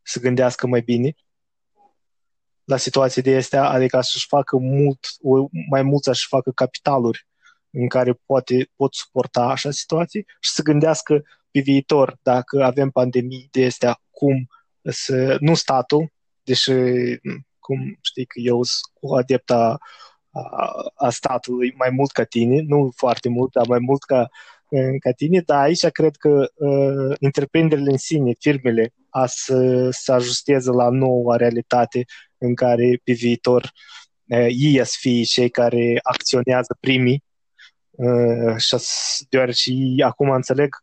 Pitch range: 125-140 Hz